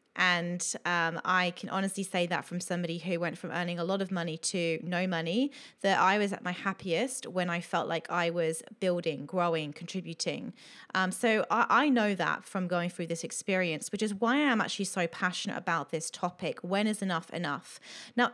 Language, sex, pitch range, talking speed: English, female, 175-230 Hz, 200 wpm